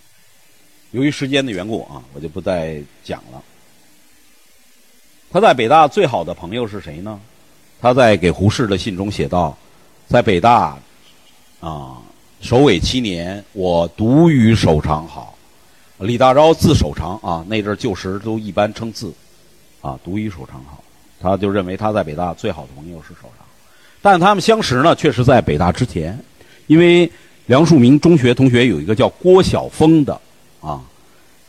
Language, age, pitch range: Chinese, 50-69, 80-130 Hz